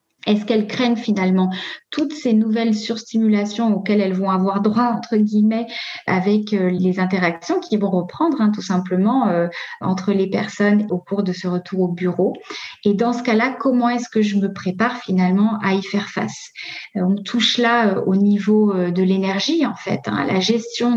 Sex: female